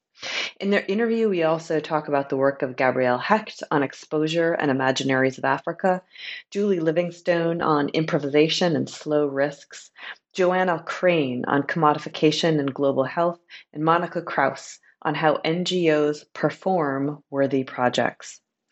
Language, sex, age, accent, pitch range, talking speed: English, female, 30-49, American, 150-180 Hz, 130 wpm